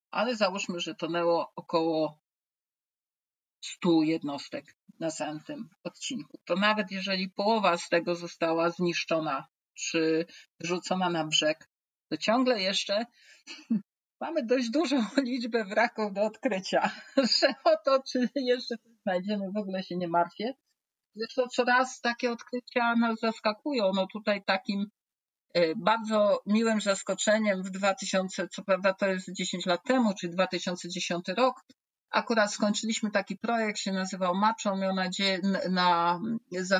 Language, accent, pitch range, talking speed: Polish, native, 180-225 Hz, 130 wpm